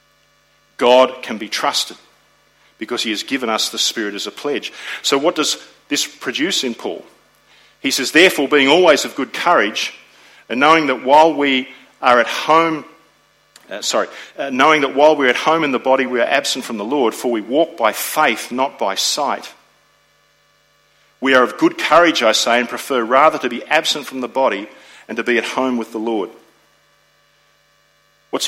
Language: English